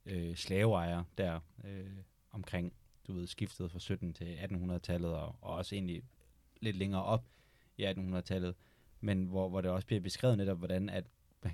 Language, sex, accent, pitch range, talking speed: Danish, male, native, 90-115 Hz, 165 wpm